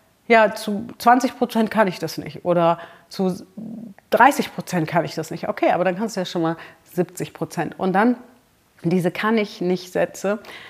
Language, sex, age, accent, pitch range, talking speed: German, female, 40-59, German, 160-215 Hz, 185 wpm